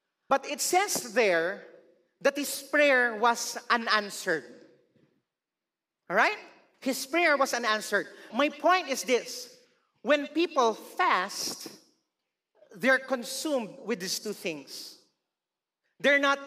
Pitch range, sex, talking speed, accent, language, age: 235-310 Hz, male, 110 wpm, Filipino, English, 40-59